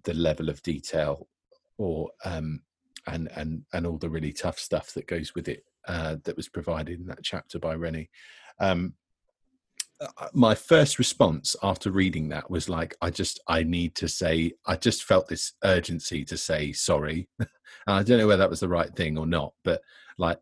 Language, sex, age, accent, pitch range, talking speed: English, male, 40-59, British, 80-100 Hz, 190 wpm